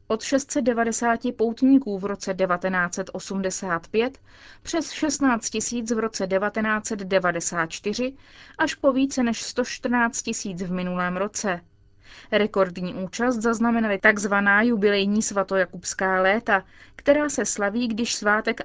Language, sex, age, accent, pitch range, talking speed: Czech, female, 30-49, native, 190-250 Hz, 105 wpm